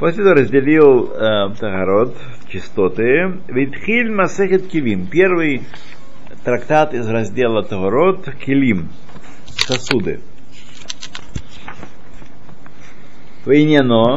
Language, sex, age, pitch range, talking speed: Russian, male, 50-69, 110-155 Hz, 70 wpm